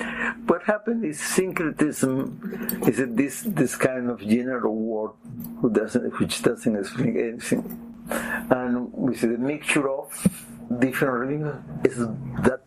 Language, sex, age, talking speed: English, male, 60-79, 135 wpm